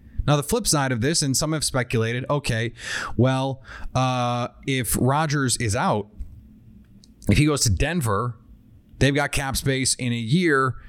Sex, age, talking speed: male, 30-49, 160 wpm